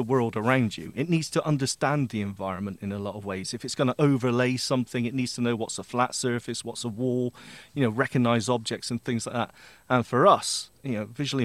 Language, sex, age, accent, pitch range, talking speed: English, male, 30-49, British, 110-140 Hz, 240 wpm